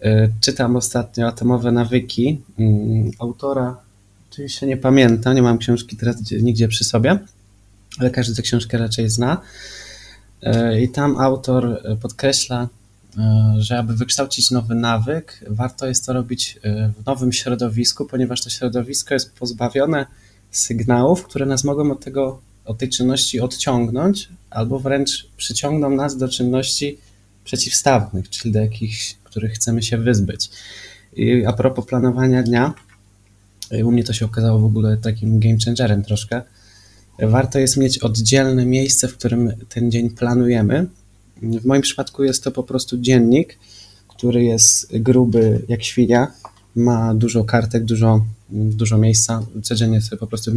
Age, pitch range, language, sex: 20-39, 110-130 Hz, Polish, male